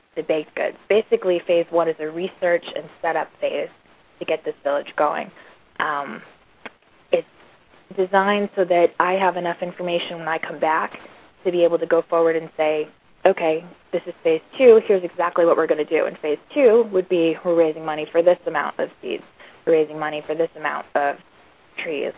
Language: English